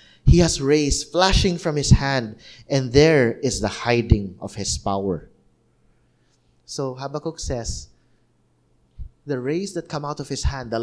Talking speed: 150 wpm